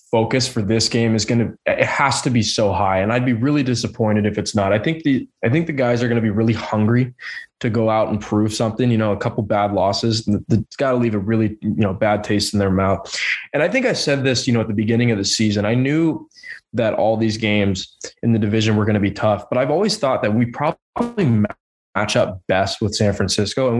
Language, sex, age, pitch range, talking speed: English, male, 20-39, 105-125 Hz, 250 wpm